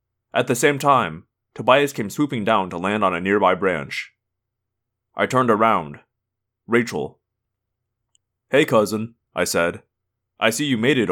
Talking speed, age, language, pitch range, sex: 145 wpm, 20-39, English, 110-125 Hz, male